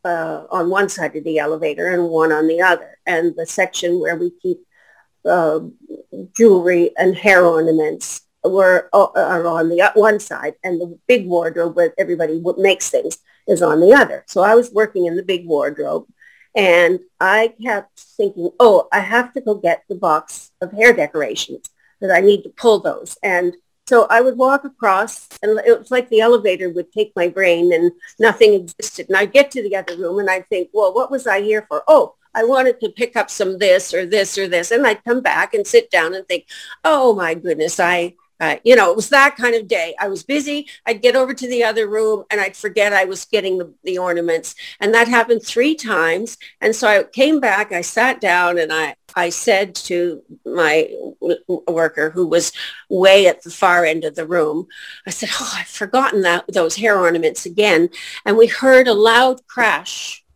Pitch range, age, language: 175-245 Hz, 50-69, English